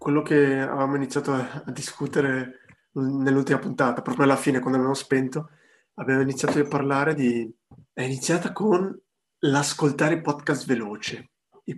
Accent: native